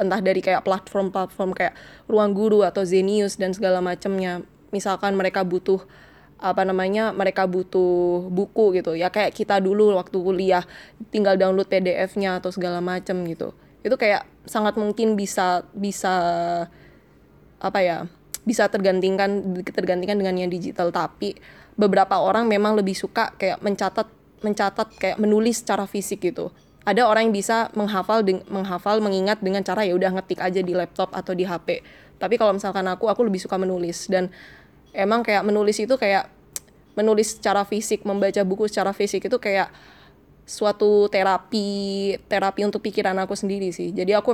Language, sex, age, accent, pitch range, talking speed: Indonesian, female, 20-39, native, 185-210 Hz, 155 wpm